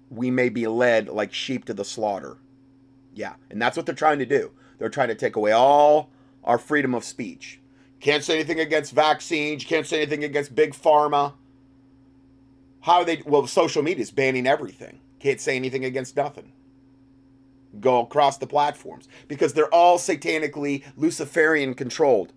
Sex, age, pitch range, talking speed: male, 30-49, 135-145 Hz, 165 wpm